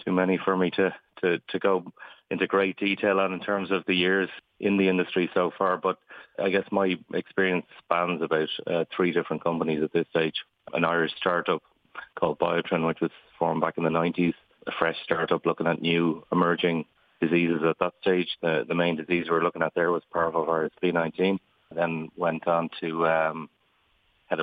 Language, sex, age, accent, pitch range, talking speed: English, male, 30-49, Irish, 80-90 Hz, 185 wpm